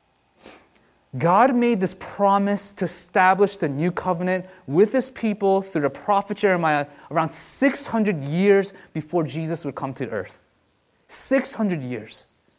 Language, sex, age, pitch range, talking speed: English, male, 30-49, 175-230 Hz, 135 wpm